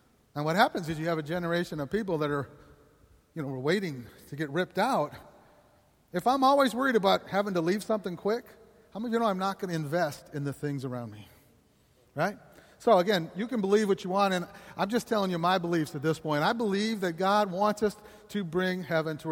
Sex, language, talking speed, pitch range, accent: male, English, 225 wpm, 145-200 Hz, American